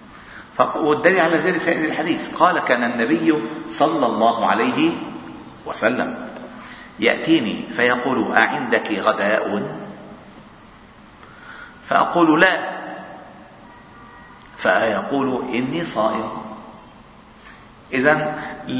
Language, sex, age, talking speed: Arabic, male, 40-59, 70 wpm